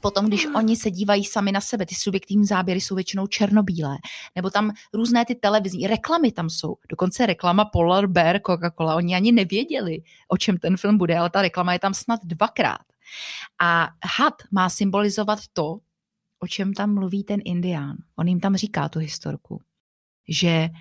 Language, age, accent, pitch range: Czech, 30-49, native, 165-200 Hz